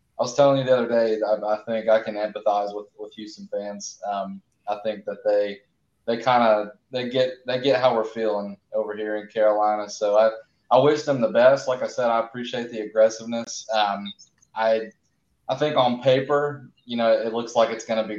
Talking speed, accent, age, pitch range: 215 wpm, American, 20-39, 105-115 Hz